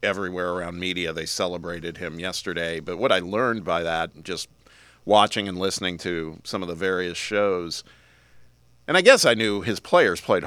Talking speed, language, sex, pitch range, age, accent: 180 wpm, English, male, 85-100 Hz, 40-59, American